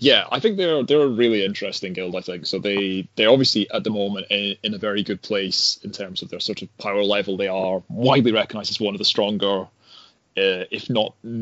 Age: 20-39